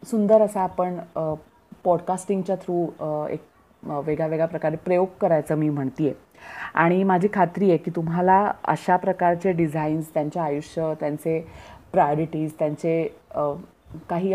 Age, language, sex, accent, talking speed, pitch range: 30-49, Marathi, female, native, 120 wpm, 150-180 Hz